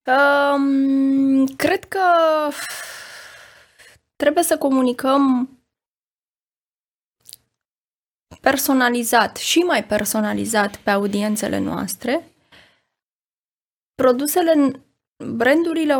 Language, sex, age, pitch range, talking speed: English, female, 20-39, 230-285 Hz, 55 wpm